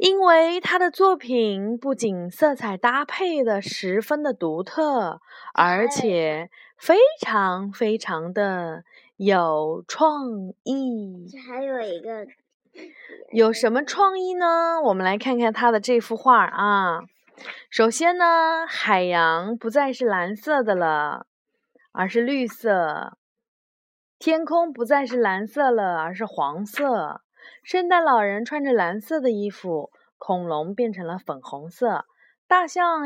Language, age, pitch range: Chinese, 20-39, 200-285 Hz